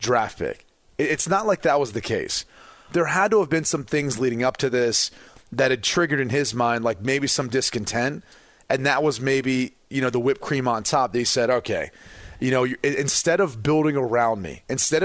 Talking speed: 205 wpm